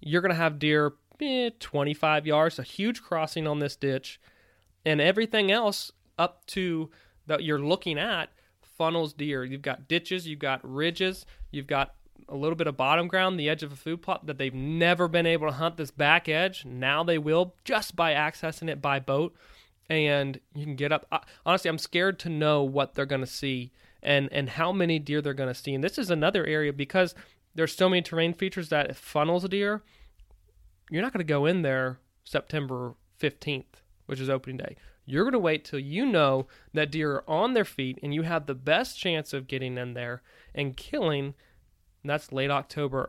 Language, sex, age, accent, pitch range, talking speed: English, male, 20-39, American, 135-165 Hz, 205 wpm